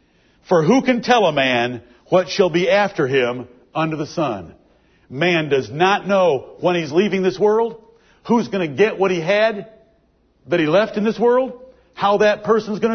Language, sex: English, male